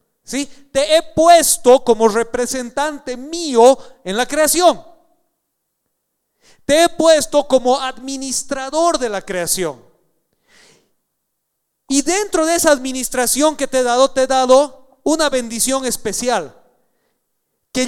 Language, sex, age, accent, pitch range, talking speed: Spanish, male, 40-59, Mexican, 220-290 Hz, 115 wpm